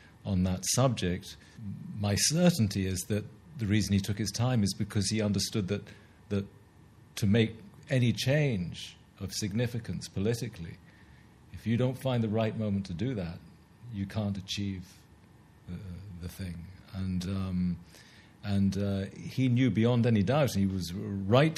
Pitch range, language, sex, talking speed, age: 95-120 Hz, Italian, male, 155 wpm, 50-69